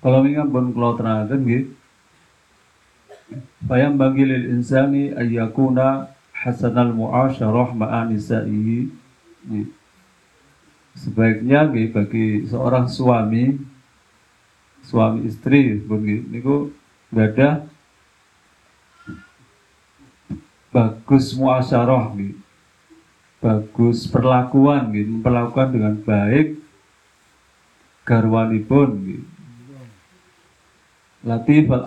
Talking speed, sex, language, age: 70 wpm, male, Indonesian, 50-69